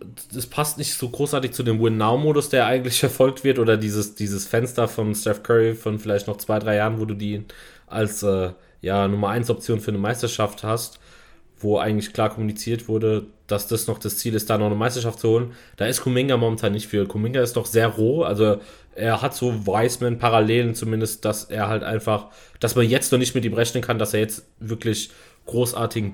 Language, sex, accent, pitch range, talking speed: German, male, German, 105-125 Hz, 205 wpm